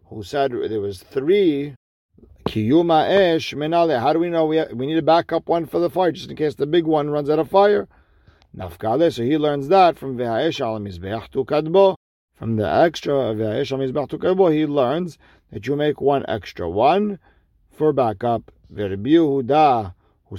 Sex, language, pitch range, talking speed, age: male, English, 110-150 Hz, 160 wpm, 50-69